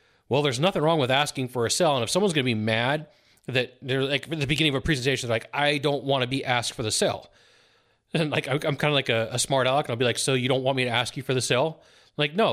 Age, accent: 30-49, American